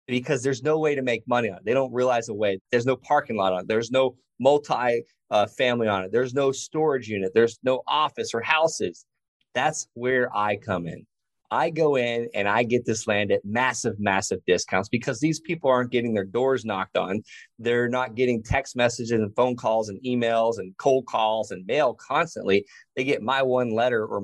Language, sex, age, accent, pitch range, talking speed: English, male, 30-49, American, 105-130 Hz, 205 wpm